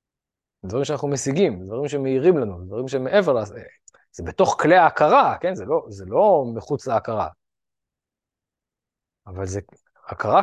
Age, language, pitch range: 20-39, Hebrew, 105-150 Hz